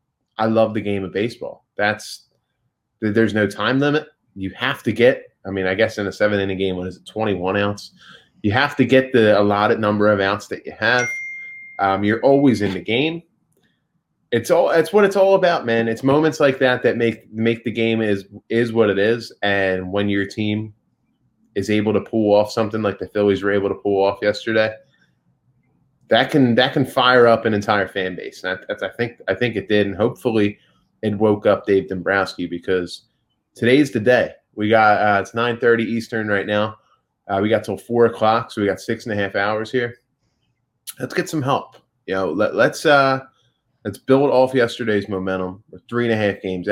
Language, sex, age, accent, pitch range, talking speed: English, male, 20-39, American, 100-130 Hz, 210 wpm